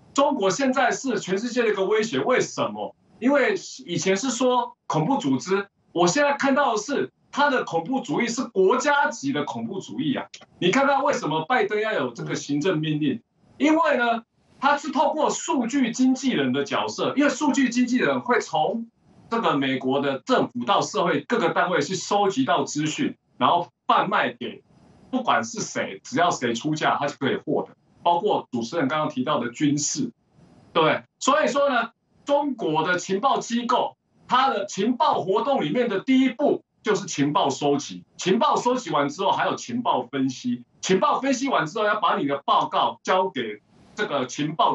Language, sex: Chinese, male